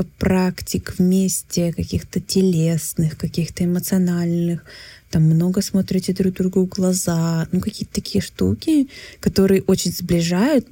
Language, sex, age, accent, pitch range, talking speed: Russian, female, 20-39, native, 160-195 Hz, 110 wpm